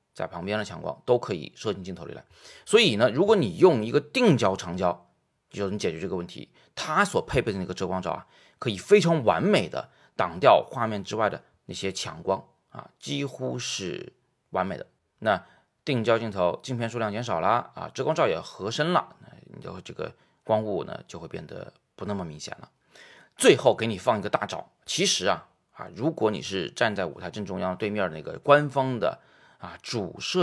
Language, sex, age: Chinese, male, 30-49